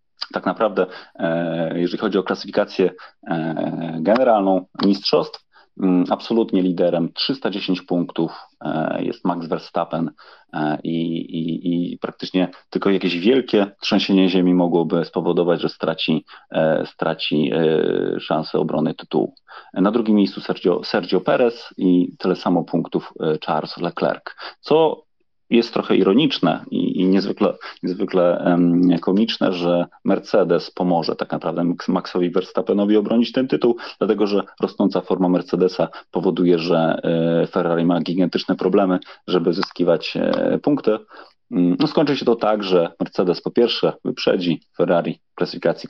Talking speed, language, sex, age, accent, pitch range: 115 wpm, Polish, male, 40-59, native, 85-95 Hz